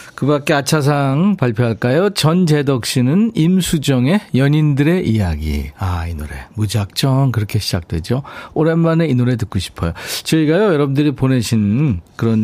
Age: 50-69